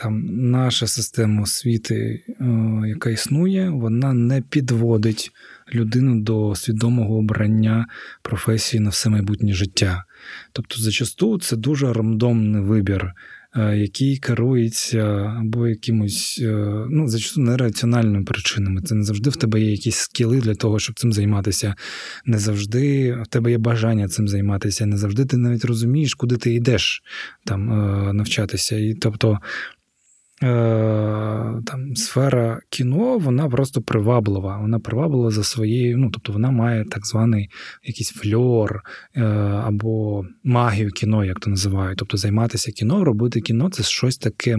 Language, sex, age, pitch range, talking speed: Ukrainian, male, 20-39, 105-120 Hz, 130 wpm